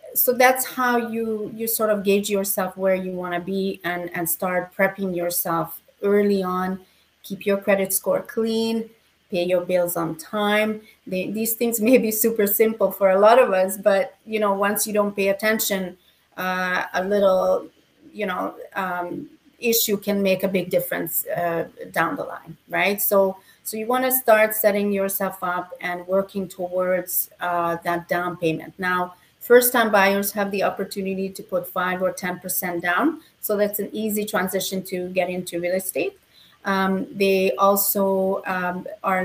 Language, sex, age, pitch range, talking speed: English, female, 30-49, 180-210 Hz, 170 wpm